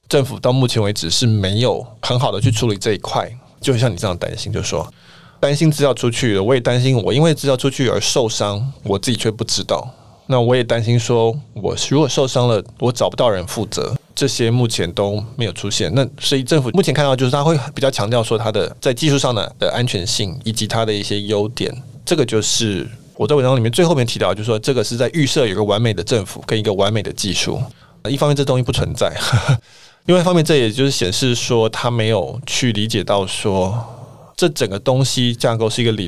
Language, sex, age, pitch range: Chinese, male, 20-39, 110-135 Hz